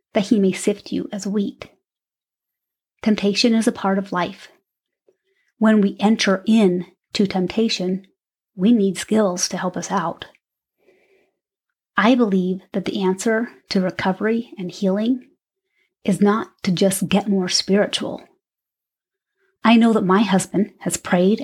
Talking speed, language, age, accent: 135 wpm, English, 30-49, American